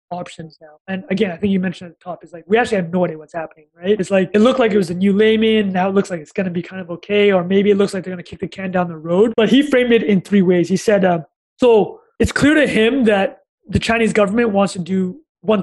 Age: 20-39